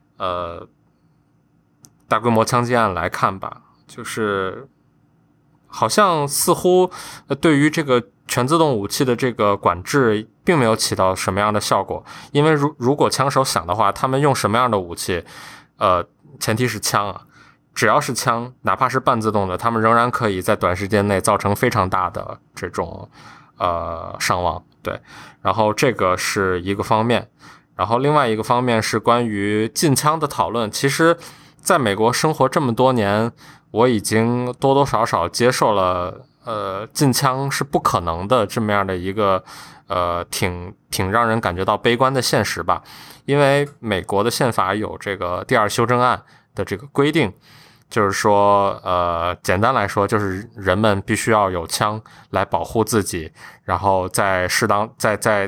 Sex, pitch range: male, 100-130 Hz